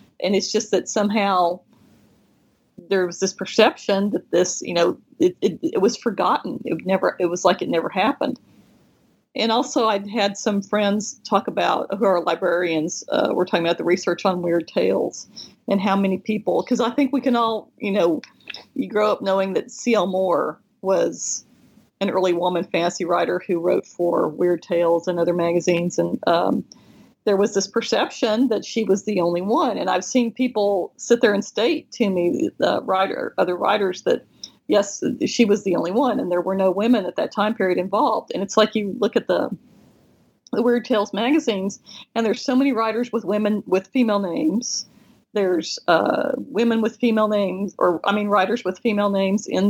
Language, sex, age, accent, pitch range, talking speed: English, female, 40-59, American, 185-230 Hz, 190 wpm